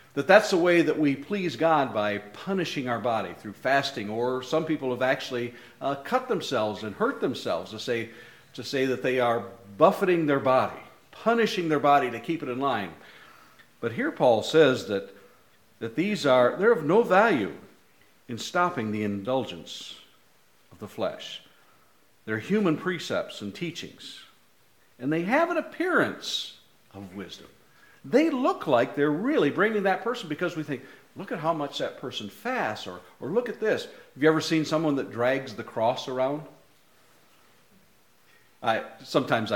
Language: English